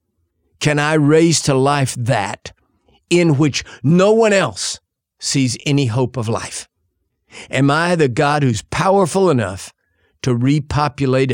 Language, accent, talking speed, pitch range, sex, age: English, American, 130 wpm, 110-150 Hz, male, 50-69